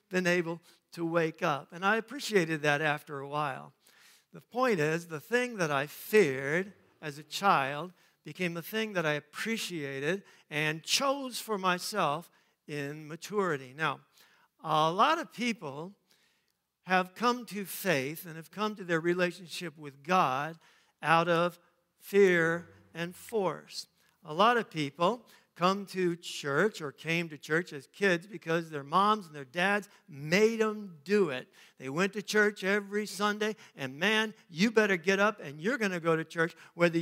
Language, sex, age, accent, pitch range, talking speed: English, male, 60-79, American, 165-205 Hz, 160 wpm